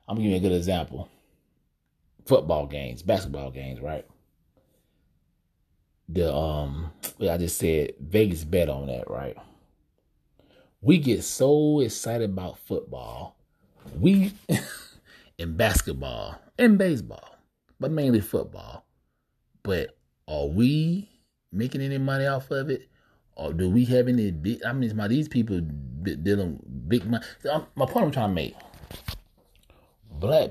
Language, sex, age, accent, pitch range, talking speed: English, male, 30-49, American, 80-120 Hz, 130 wpm